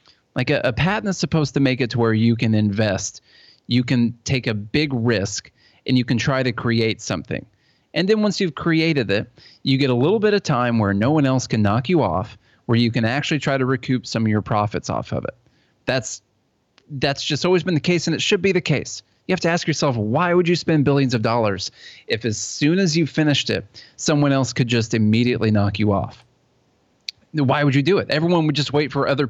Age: 30-49